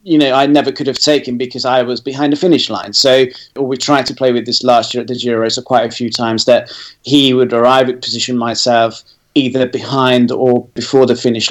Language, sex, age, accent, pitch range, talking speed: English, male, 30-49, British, 115-135 Hz, 230 wpm